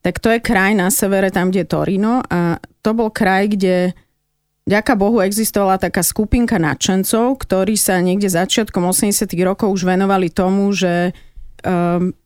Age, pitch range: 30-49, 180-205 Hz